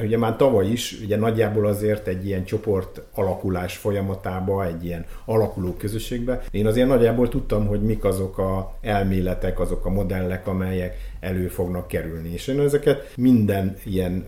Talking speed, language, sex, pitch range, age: 160 wpm, Hungarian, male, 90-110 Hz, 50-69